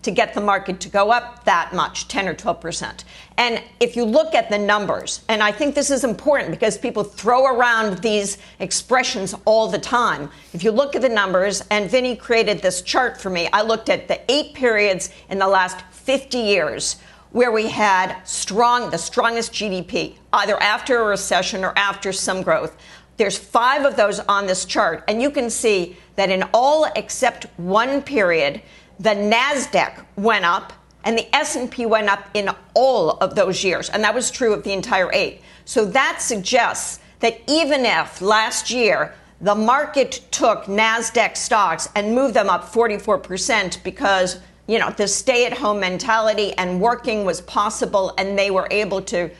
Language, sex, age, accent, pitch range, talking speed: English, female, 50-69, American, 195-240 Hz, 180 wpm